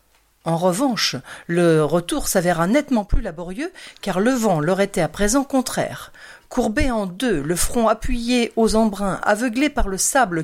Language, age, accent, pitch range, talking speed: French, 50-69, French, 175-240 Hz, 160 wpm